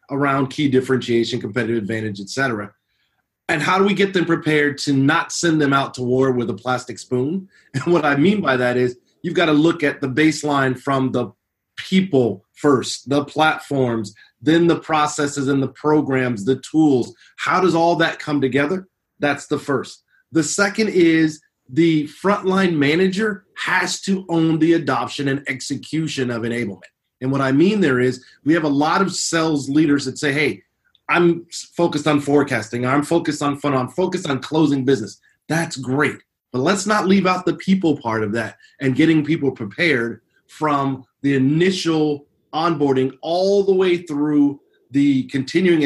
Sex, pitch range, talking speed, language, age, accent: male, 130-170 Hz, 175 wpm, English, 30-49, American